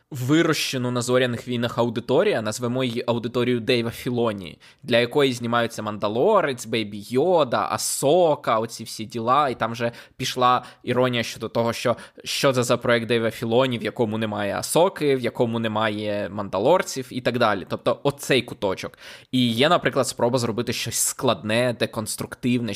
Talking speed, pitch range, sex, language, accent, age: 150 wpm, 115-135 Hz, male, Ukrainian, native, 20-39